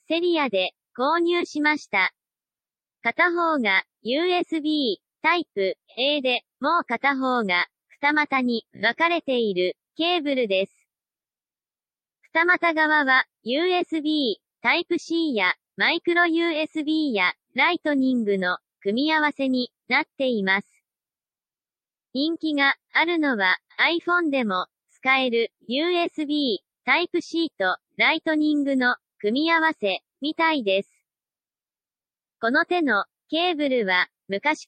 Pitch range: 230-330 Hz